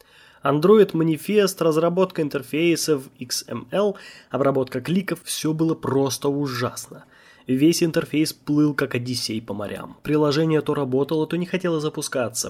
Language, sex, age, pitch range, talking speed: Russian, male, 20-39, 125-170 Hz, 120 wpm